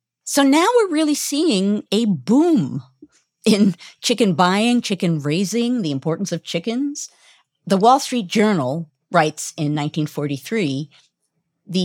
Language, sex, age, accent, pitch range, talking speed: English, female, 50-69, American, 155-225 Hz, 115 wpm